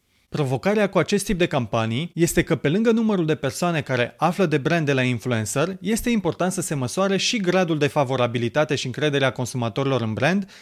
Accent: native